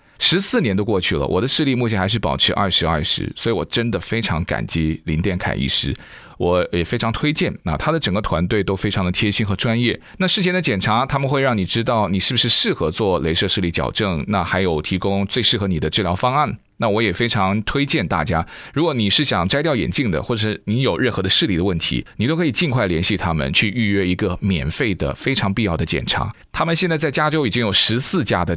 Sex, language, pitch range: male, Chinese, 95-135 Hz